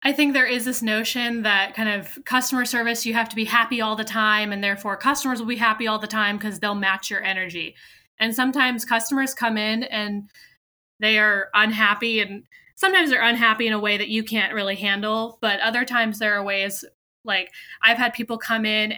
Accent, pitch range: American, 210-255 Hz